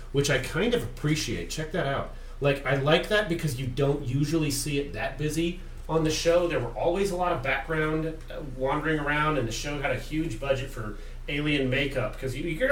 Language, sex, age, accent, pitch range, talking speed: English, male, 40-59, American, 120-155 Hz, 210 wpm